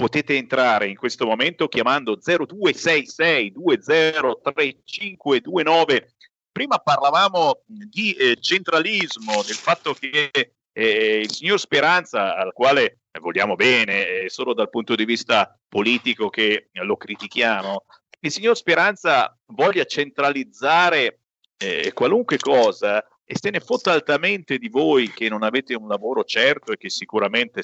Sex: male